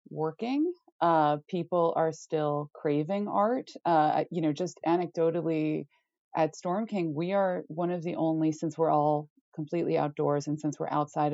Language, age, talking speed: English, 30-49, 160 wpm